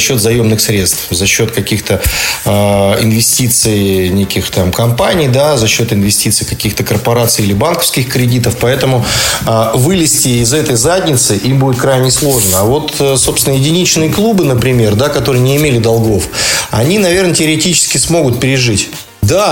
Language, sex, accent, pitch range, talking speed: Russian, male, native, 105-135 Hz, 140 wpm